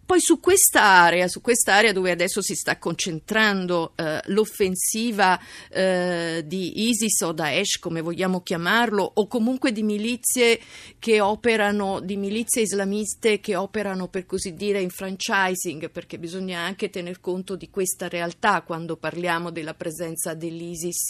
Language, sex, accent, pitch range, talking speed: Italian, female, native, 180-220 Hz, 135 wpm